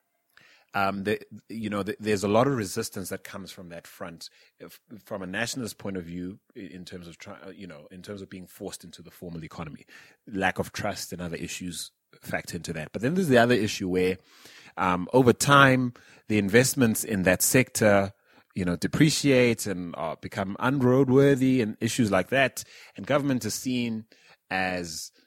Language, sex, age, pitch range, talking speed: English, male, 30-49, 90-110 Hz, 185 wpm